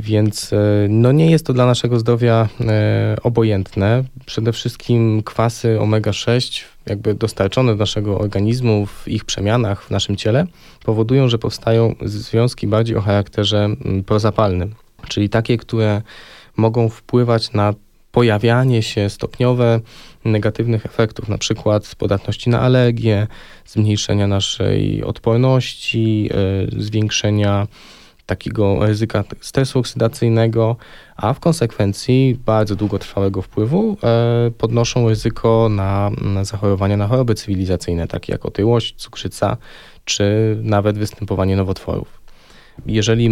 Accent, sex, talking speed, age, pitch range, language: native, male, 110 wpm, 20-39, 100-115 Hz, Polish